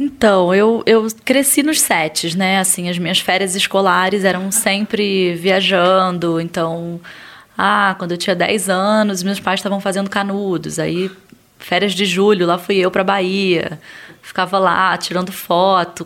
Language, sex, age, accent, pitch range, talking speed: Portuguese, female, 10-29, Brazilian, 180-225 Hz, 150 wpm